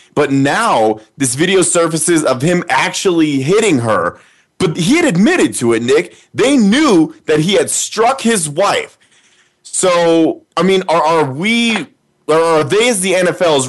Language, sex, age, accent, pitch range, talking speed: English, male, 20-39, American, 140-185 Hz, 160 wpm